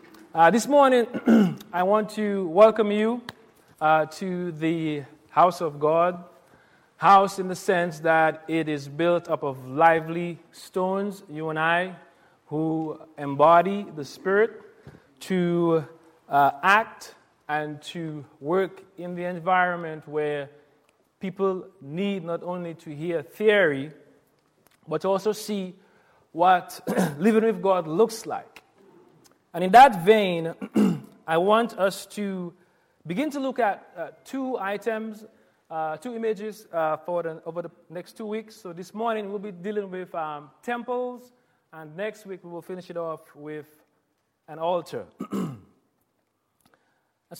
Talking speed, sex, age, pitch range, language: 135 wpm, male, 30-49, 160-210 Hz, English